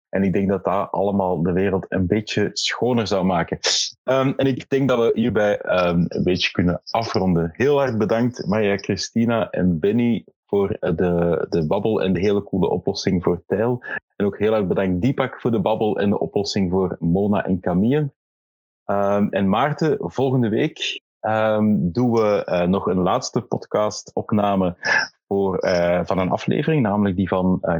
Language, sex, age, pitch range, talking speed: Dutch, male, 30-49, 95-115 Hz, 175 wpm